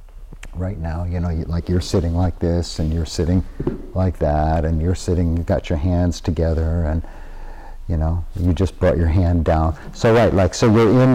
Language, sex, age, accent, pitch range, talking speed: English, male, 50-69, American, 75-100 Hz, 205 wpm